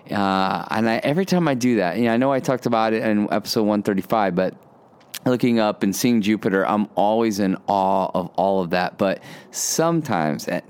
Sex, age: male, 30-49